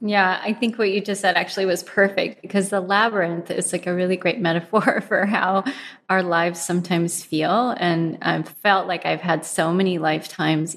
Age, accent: 30-49, American